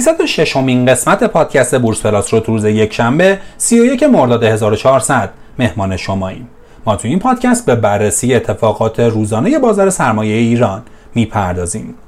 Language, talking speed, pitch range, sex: Persian, 140 wpm, 110-170 Hz, male